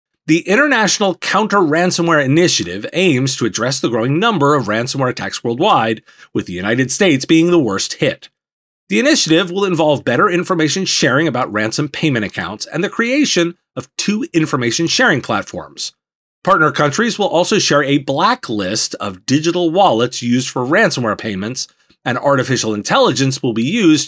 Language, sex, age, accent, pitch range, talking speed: English, male, 30-49, American, 130-190 Hz, 155 wpm